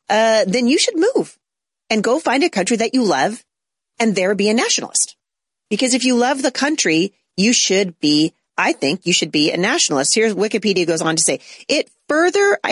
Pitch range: 165-230 Hz